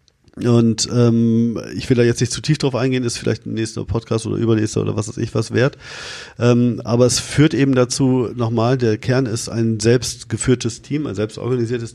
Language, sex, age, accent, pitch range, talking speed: German, male, 40-59, German, 115-140 Hz, 195 wpm